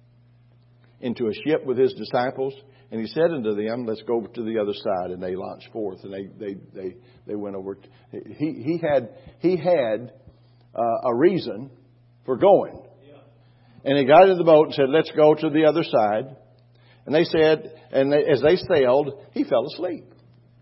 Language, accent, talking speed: English, American, 185 wpm